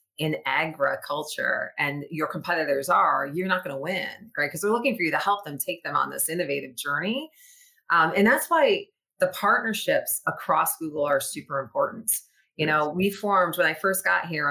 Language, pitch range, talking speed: English, 160-210 Hz, 190 wpm